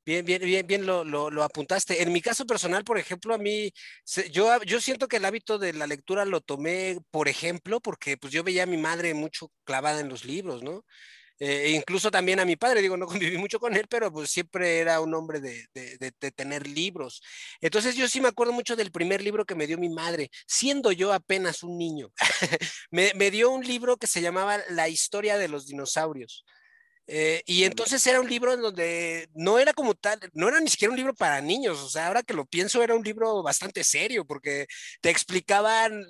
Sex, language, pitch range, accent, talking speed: male, Spanish, 165-215 Hz, Mexican, 220 wpm